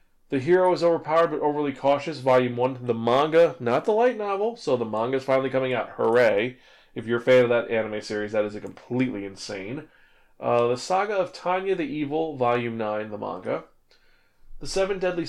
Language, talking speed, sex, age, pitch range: English, 195 wpm, male, 30-49, 115-170 Hz